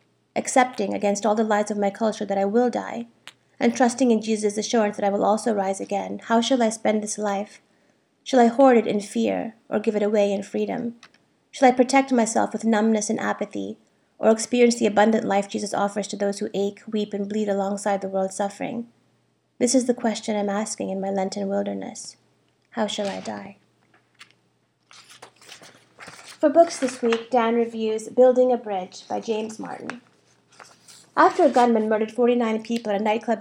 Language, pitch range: English, 205-235 Hz